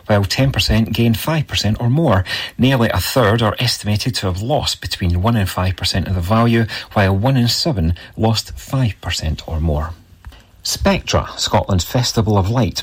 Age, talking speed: 40-59, 160 wpm